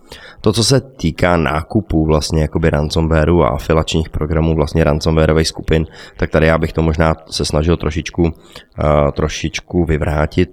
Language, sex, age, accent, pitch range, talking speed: Czech, male, 20-39, native, 75-85 Hz, 135 wpm